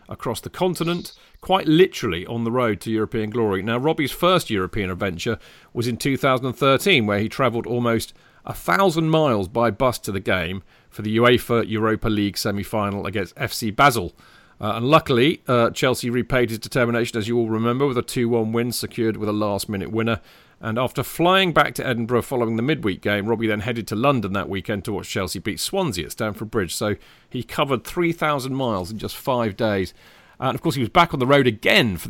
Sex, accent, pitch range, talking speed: male, British, 105-130 Hz, 200 wpm